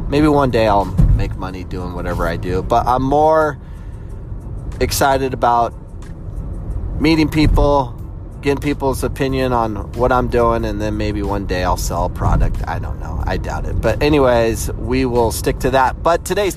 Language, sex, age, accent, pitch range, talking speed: English, male, 30-49, American, 95-120 Hz, 175 wpm